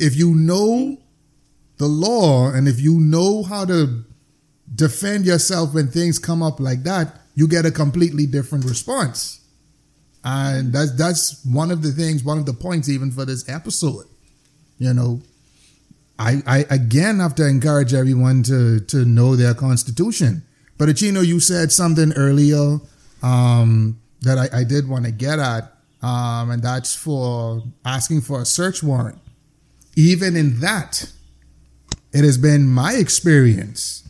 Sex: male